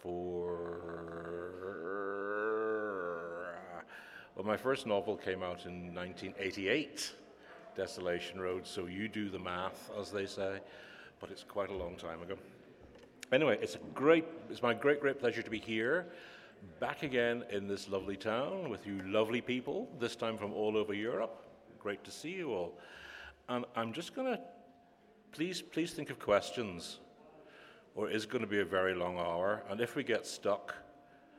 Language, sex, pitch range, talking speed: Italian, male, 95-120 Hz, 160 wpm